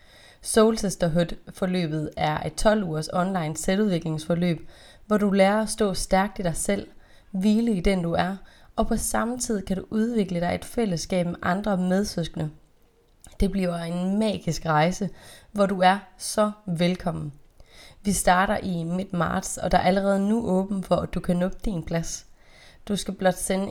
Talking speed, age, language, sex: 170 wpm, 30-49, Danish, female